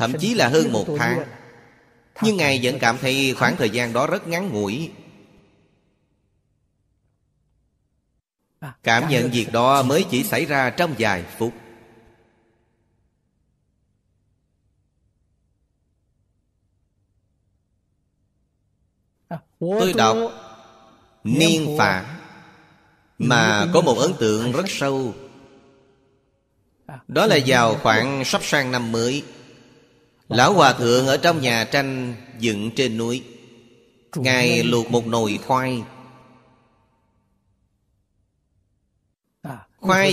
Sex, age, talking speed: male, 30-49, 95 wpm